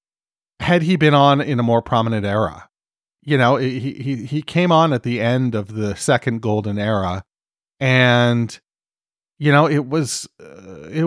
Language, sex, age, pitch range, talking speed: English, male, 40-59, 105-140 Hz, 170 wpm